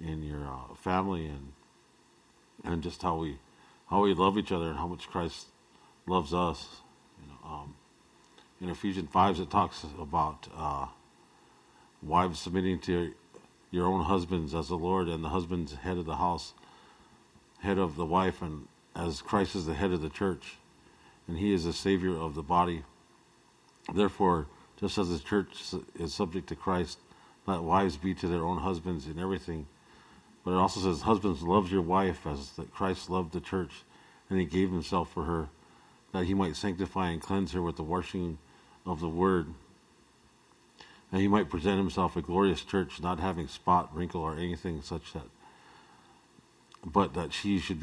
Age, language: 50-69, English